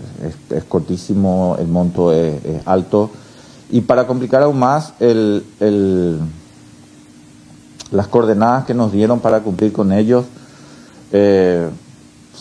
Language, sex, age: Spanish, male, 50-69